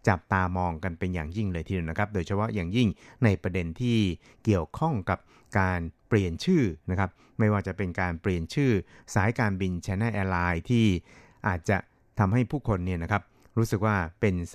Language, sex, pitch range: Thai, male, 90-110 Hz